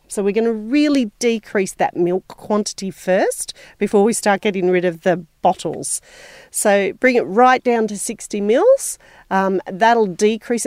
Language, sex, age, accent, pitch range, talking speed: English, female, 40-59, Australian, 175-220 Hz, 165 wpm